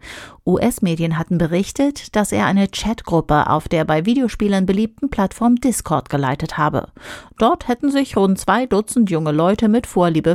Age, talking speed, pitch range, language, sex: 40-59, 150 wpm, 165-225 Hz, German, female